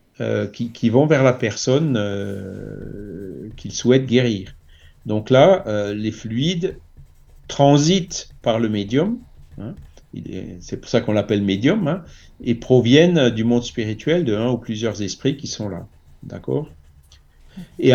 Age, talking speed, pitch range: 50-69, 140 wpm, 105-130 Hz